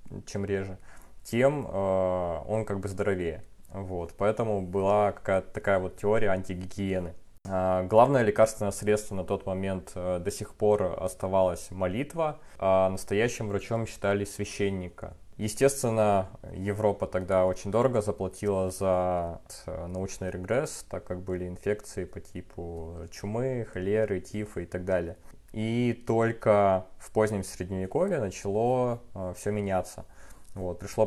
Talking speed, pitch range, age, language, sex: 115 wpm, 95-105 Hz, 20-39, Russian, male